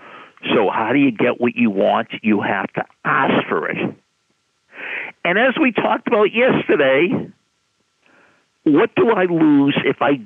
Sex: male